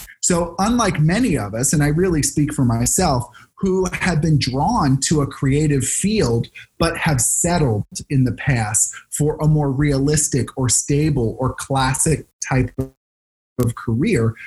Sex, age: male, 30-49